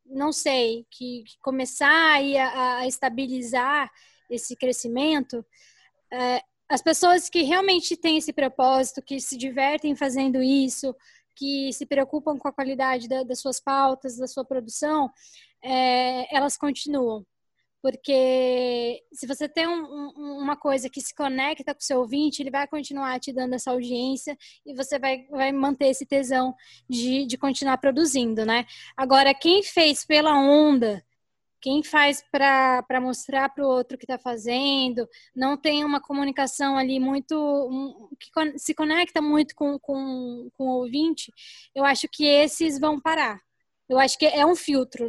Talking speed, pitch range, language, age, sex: 145 wpm, 255-300 Hz, Portuguese, 10-29, female